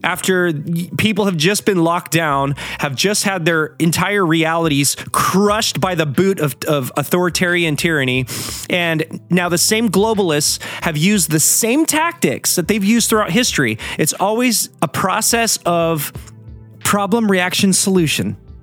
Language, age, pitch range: English, 30-49, 150-190 Hz